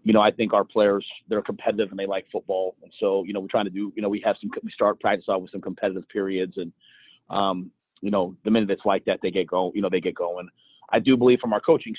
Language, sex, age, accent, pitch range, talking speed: English, male, 30-49, American, 100-115 Hz, 280 wpm